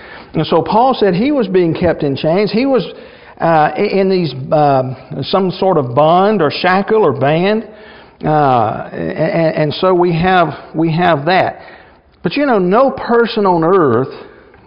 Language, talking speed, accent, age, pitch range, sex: English, 165 wpm, American, 50-69, 160-205 Hz, male